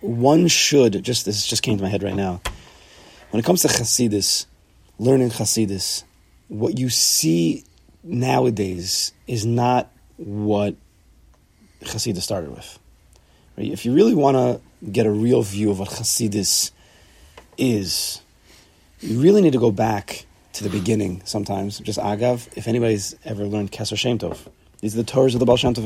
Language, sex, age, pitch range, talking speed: English, male, 30-49, 95-130 Hz, 155 wpm